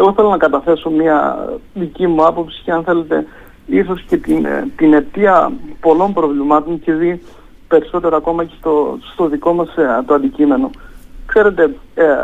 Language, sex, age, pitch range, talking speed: Greek, male, 50-69, 155-190 Hz, 150 wpm